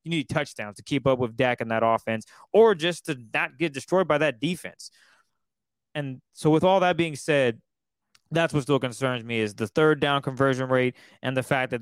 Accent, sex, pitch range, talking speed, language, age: American, male, 125-155 Hz, 215 wpm, English, 20-39